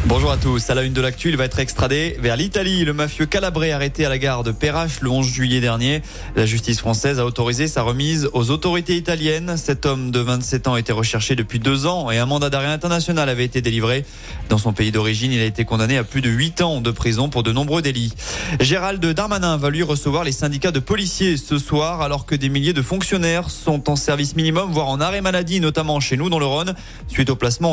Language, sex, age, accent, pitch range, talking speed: French, male, 20-39, French, 125-165 Hz, 235 wpm